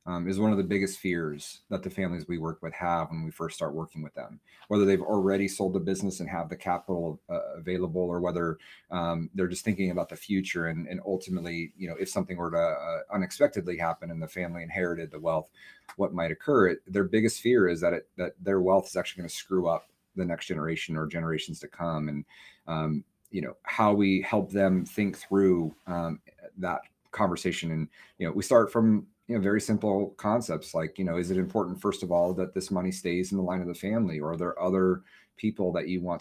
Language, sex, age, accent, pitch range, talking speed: English, male, 30-49, American, 85-100 Hz, 225 wpm